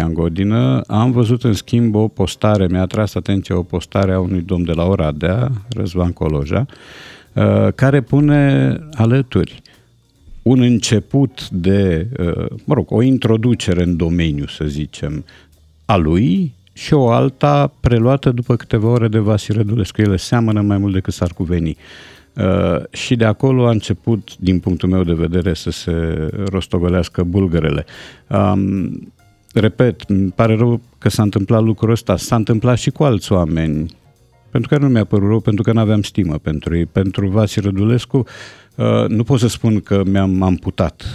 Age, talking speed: 50-69, 160 wpm